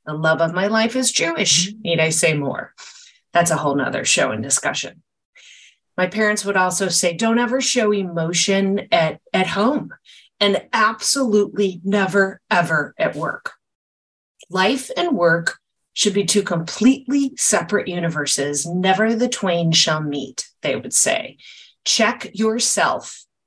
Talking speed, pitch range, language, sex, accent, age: 140 wpm, 165-215 Hz, English, female, American, 30-49